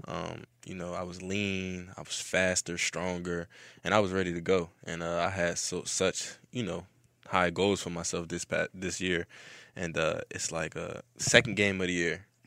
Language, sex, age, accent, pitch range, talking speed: English, male, 20-39, American, 85-95 Hz, 200 wpm